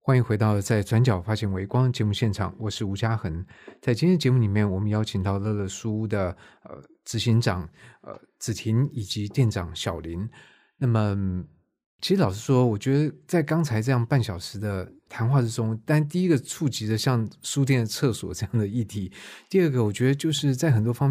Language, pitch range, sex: Chinese, 105-130 Hz, male